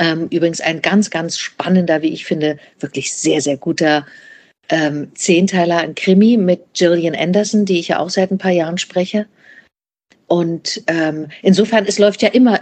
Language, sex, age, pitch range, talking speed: German, female, 50-69, 160-190 Hz, 165 wpm